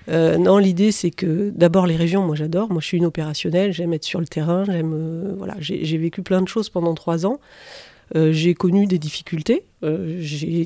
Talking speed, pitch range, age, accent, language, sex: 220 wpm, 160-195 Hz, 40-59, French, French, female